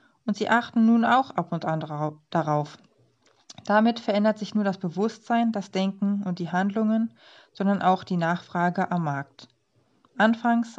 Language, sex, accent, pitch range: German, female, German, 175-215 Hz